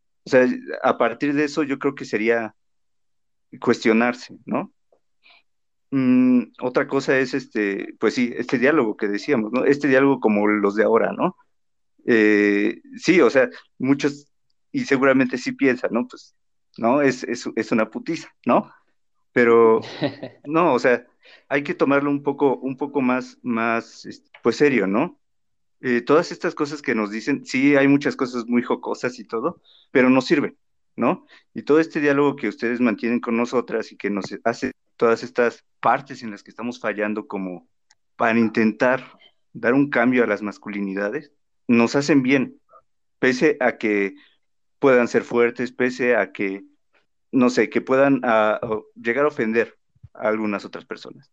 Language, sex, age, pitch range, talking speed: Spanish, male, 50-69, 110-140 Hz, 160 wpm